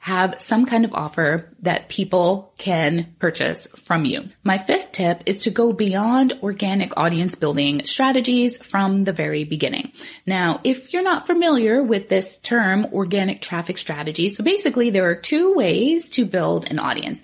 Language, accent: English, American